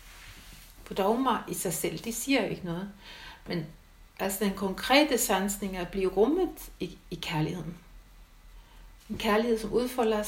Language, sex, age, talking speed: Danish, female, 60-79, 140 wpm